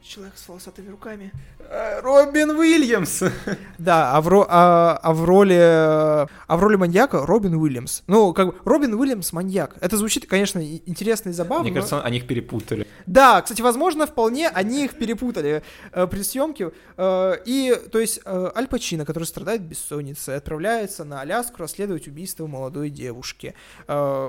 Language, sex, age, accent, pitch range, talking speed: Russian, male, 20-39, native, 155-210 Hz, 140 wpm